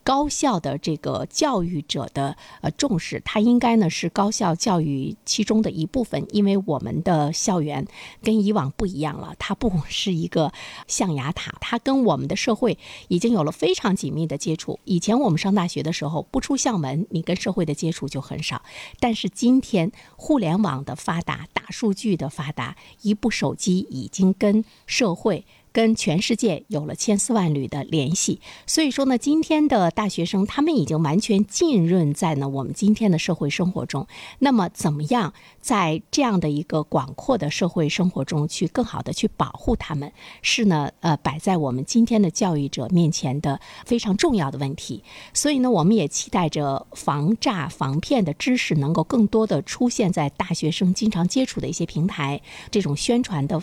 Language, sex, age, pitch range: Chinese, female, 50-69, 155-220 Hz